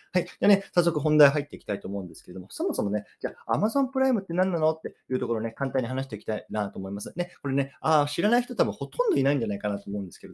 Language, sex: Japanese, male